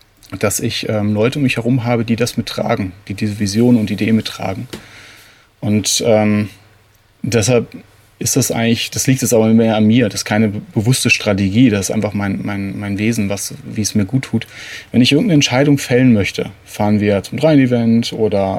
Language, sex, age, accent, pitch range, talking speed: German, male, 30-49, German, 100-115 Hz, 195 wpm